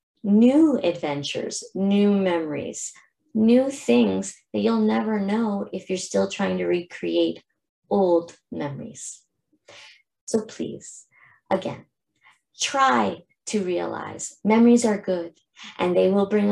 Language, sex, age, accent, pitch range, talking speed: English, female, 30-49, American, 165-210 Hz, 115 wpm